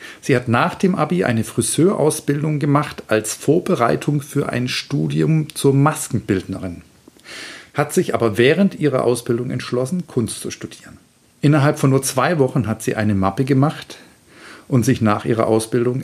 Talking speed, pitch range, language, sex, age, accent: 150 wpm, 110-145 Hz, German, male, 50-69, German